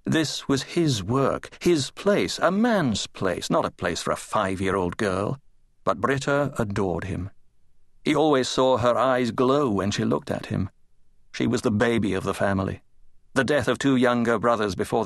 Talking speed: 180 wpm